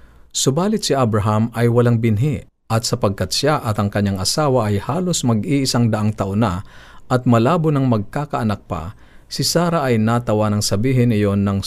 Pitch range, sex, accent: 100-120 Hz, male, native